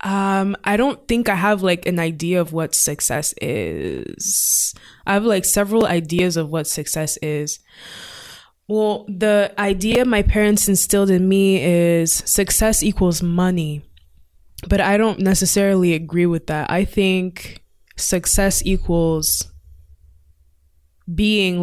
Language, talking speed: English, 130 wpm